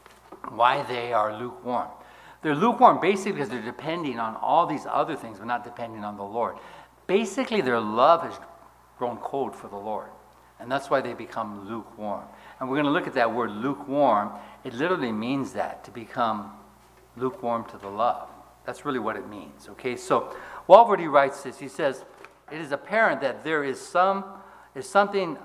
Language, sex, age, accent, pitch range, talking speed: English, male, 60-79, American, 115-160 Hz, 180 wpm